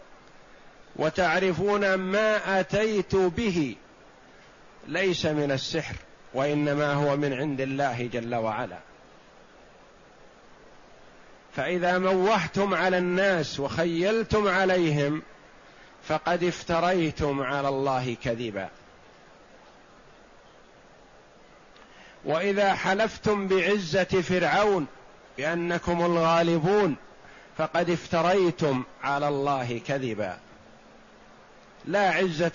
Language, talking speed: Arabic, 70 wpm